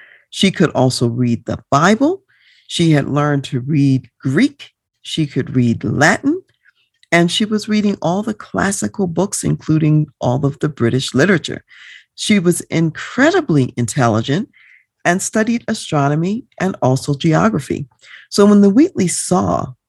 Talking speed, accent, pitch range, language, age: 135 wpm, American, 125-170 Hz, English, 50-69